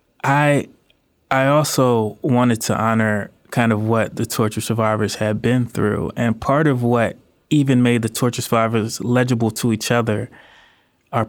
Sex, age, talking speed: male, 20-39, 155 wpm